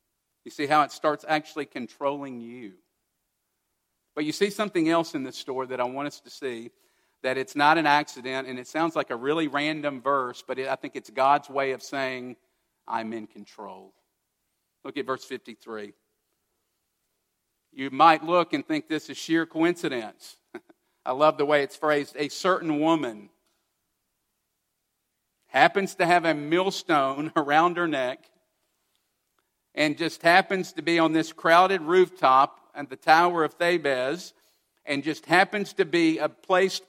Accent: American